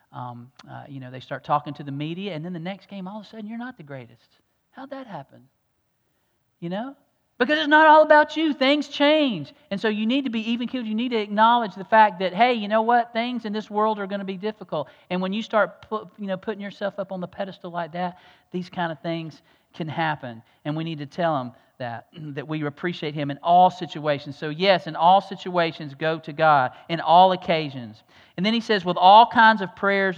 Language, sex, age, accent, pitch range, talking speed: English, male, 40-59, American, 160-205 Hz, 235 wpm